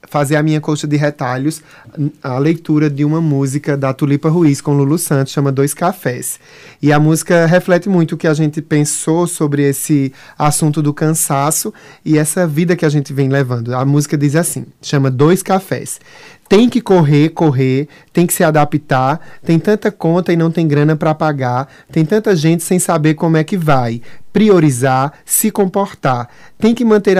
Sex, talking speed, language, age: male, 180 wpm, Portuguese, 20-39